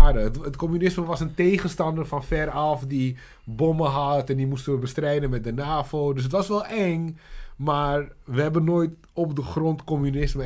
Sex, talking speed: male, 180 wpm